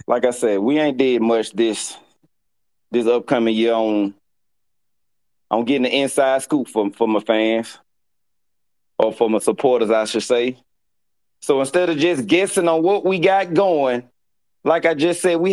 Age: 30-49